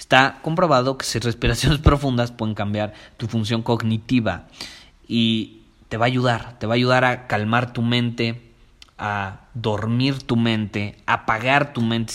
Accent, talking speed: Mexican, 160 wpm